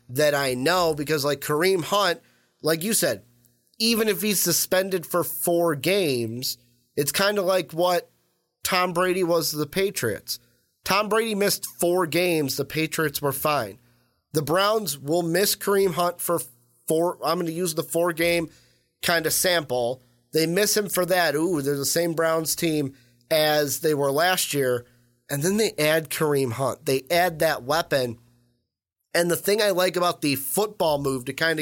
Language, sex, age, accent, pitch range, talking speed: English, male, 30-49, American, 130-175 Hz, 175 wpm